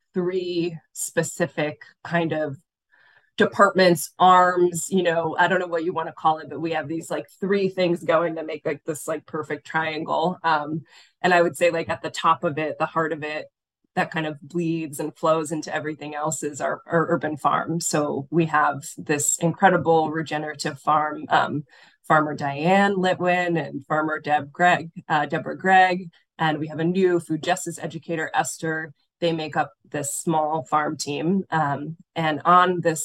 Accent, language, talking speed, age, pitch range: American, English, 180 wpm, 20-39, 155-175 Hz